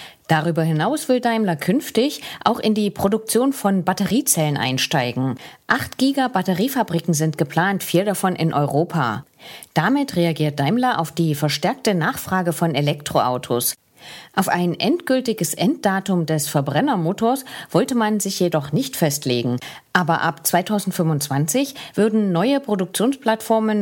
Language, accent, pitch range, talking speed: English, German, 160-230 Hz, 120 wpm